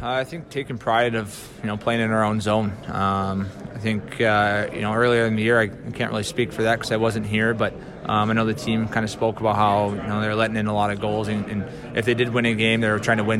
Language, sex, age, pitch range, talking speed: English, male, 20-39, 105-115 Hz, 295 wpm